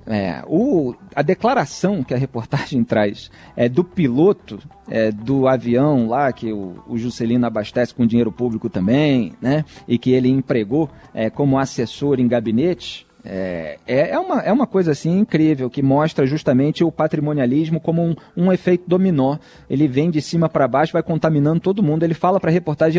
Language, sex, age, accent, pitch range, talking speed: Portuguese, male, 40-59, Brazilian, 125-185 Hz, 175 wpm